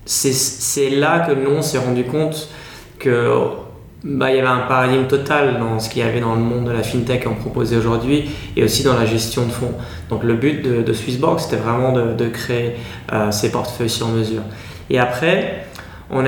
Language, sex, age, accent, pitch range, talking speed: French, male, 20-39, French, 120-150 Hz, 205 wpm